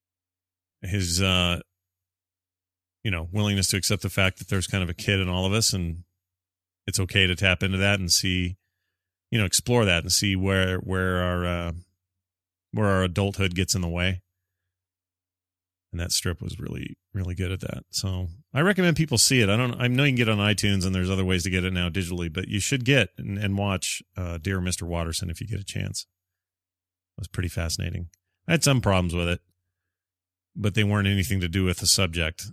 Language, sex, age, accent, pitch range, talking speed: English, male, 30-49, American, 90-105 Hz, 210 wpm